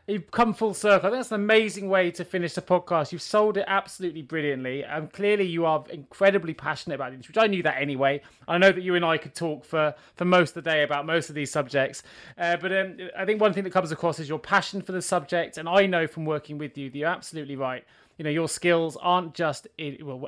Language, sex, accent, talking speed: English, male, British, 255 wpm